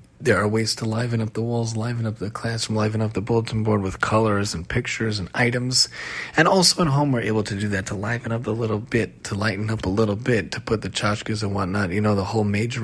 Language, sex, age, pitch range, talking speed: English, male, 30-49, 100-120 Hz, 255 wpm